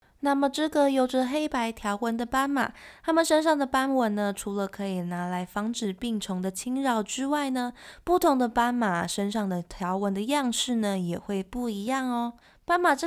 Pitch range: 195-265 Hz